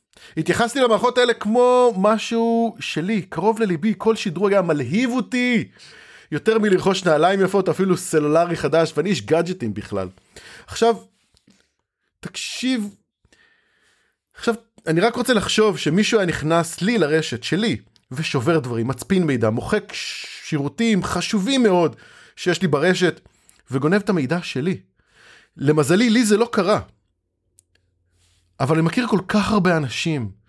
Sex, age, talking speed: male, 30-49, 125 wpm